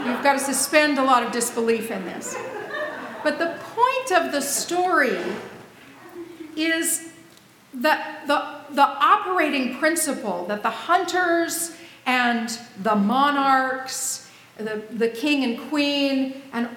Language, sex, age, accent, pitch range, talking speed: English, female, 40-59, American, 235-310 Hz, 120 wpm